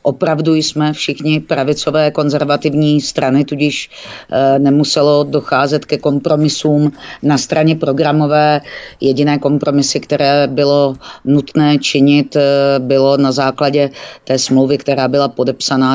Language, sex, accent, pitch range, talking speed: Czech, female, native, 130-145 Hz, 105 wpm